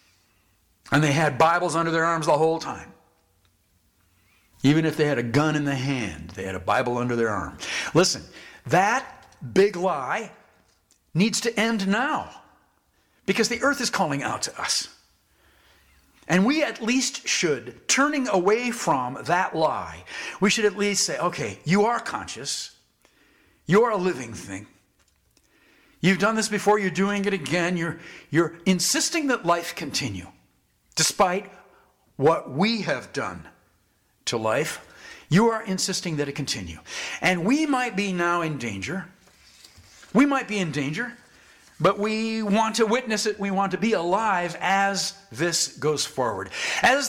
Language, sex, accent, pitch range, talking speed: English, male, American, 145-215 Hz, 155 wpm